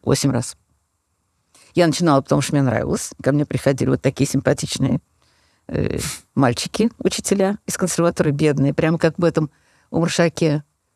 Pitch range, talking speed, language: 140-180 Hz, 140 wpm, Russian